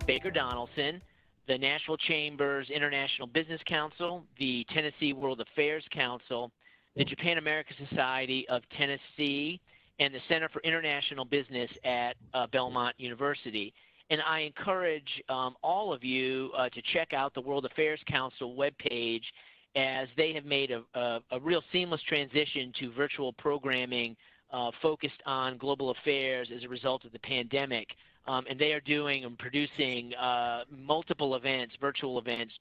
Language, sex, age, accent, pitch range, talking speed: English, male, 40-59, American, 125-150 Hz, 145 wpm